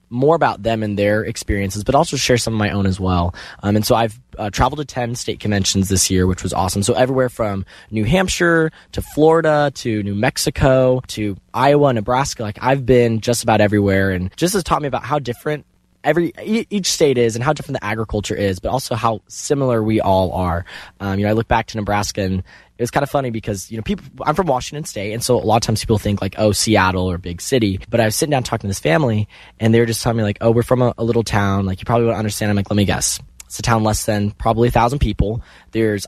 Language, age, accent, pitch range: English, 10-29, American, 100-130 Hz